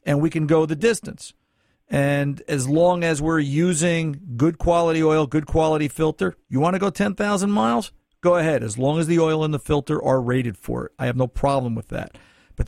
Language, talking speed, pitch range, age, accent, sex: English, 215 wpm, 130-180 Hz, 50-69, American, male